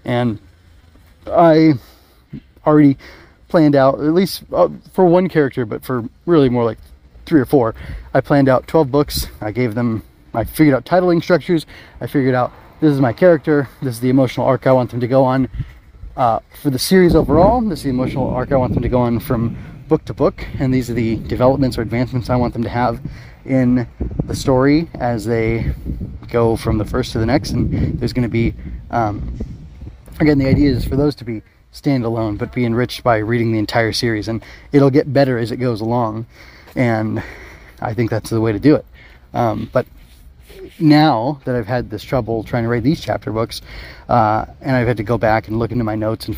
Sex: male